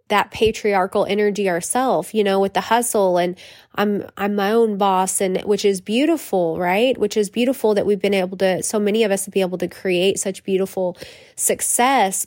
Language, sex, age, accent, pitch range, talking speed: English, female, 20-39, American, 185-220 Hz, 195 wpm